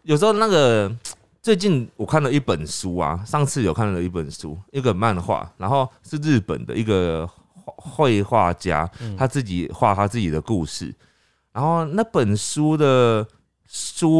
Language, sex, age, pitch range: Chinese, male, 30-49, 90-130 Hz